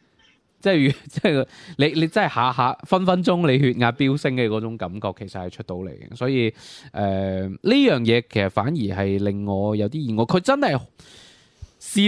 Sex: male